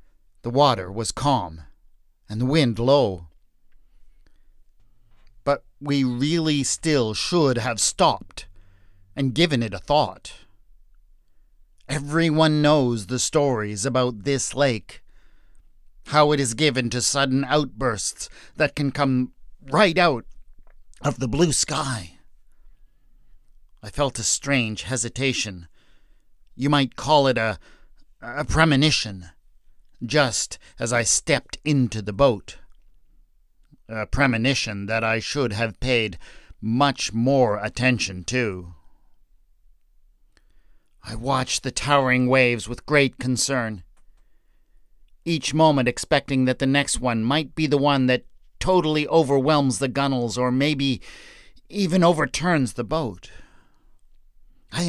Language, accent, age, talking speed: English, American, 50-69, 115 wpm